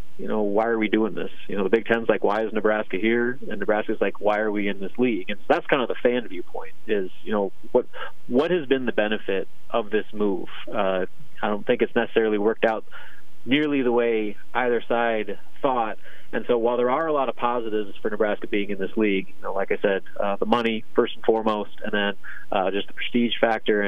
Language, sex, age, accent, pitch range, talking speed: English, male, 30-49, American, 105-120 Hz, 235 wpm